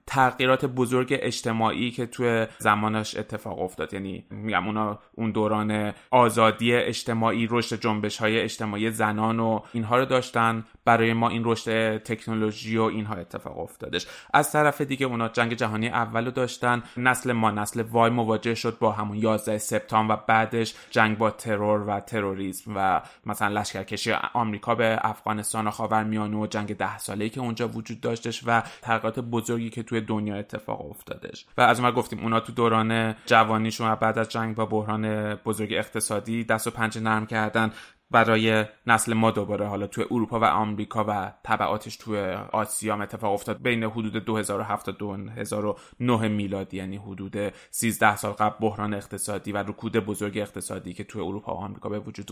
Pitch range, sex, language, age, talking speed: 105-115 Hz, male, Persian, 20-39, 160 wpm